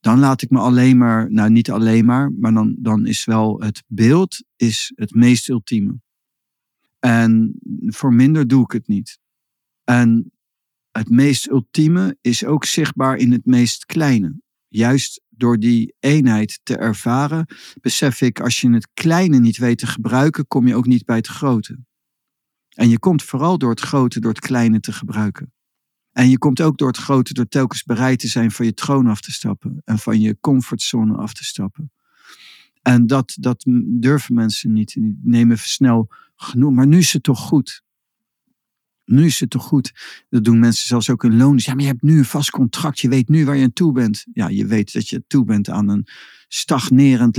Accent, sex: Dutch, male